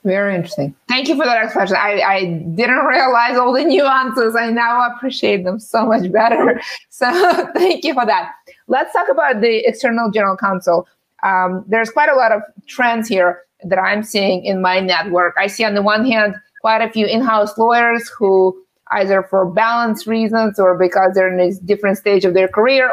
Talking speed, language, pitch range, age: 190 wpm, English, 195-235 Hz, 20-39